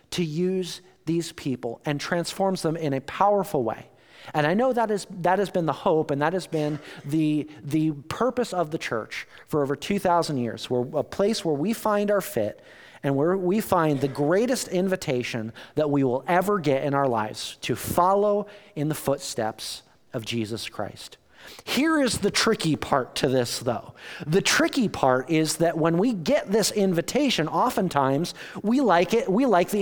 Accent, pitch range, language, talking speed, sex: American, 145-200 Hz, English, 185 wpm, male